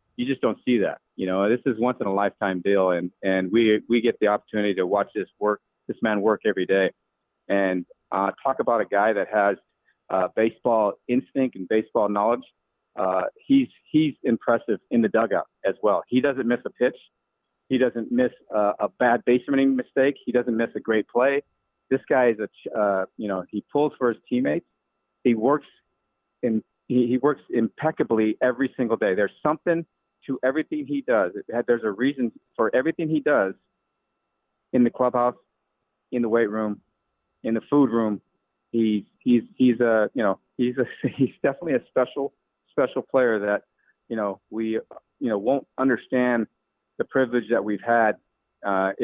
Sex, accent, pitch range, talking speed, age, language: male, American, 100-125 Hz, 180 wpm, 40-59, English